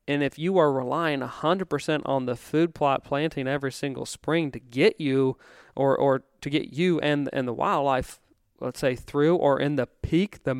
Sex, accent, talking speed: male, American, 205 wpm